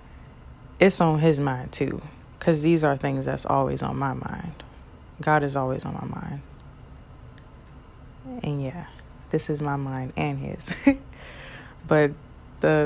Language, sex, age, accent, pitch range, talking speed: English, female, 20-39, American, 135-155 Hz, 140 wpm